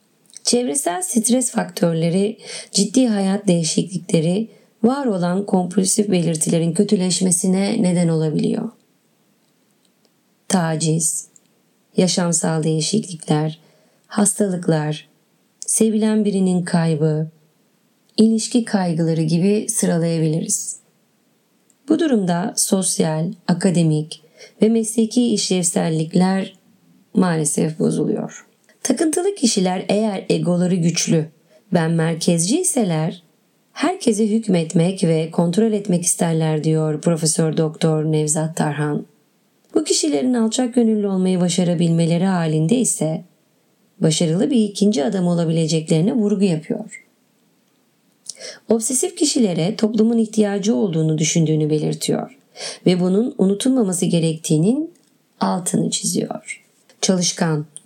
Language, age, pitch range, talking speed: Turkish, 30-49, 165-220 Hz, 85 wpm